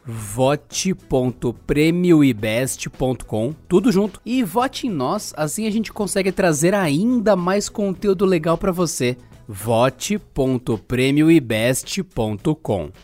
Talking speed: 85 wpm